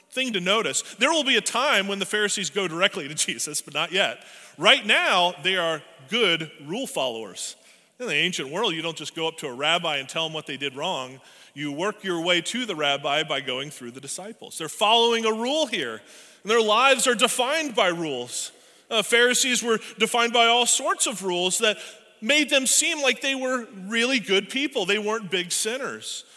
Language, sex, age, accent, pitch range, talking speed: English, male, 30-49, American, 160-225 Hz, 205 wpm